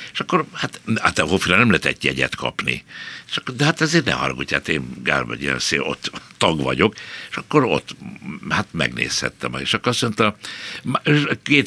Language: Hungarian